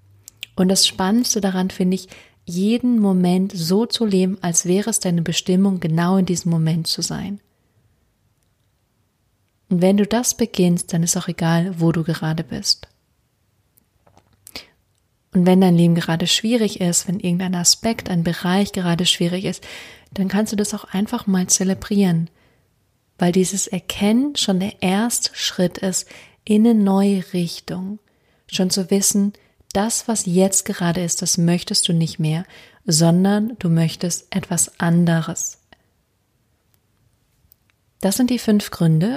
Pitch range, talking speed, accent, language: 165-200 Hz, 140 wpm, German, German